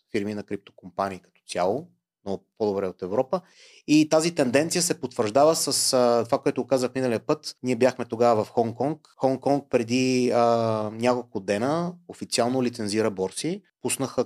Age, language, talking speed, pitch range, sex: 30-49, Bulgarian, 145 wpm, 100-125 Hz, male